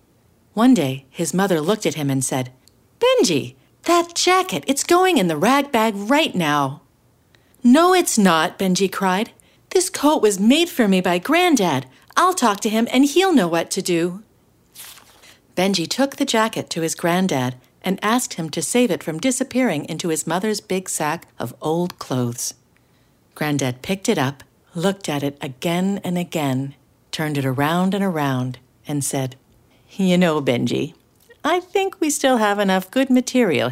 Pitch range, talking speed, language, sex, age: 140-220 Hz, 165 wpm, English, female, 50-69